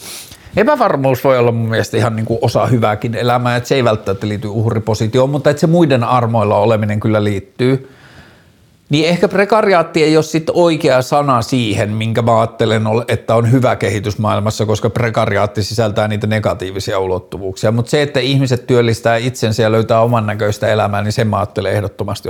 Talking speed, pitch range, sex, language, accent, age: 170 wpm, 105-125 Hz, male, Finnish, native, 50-69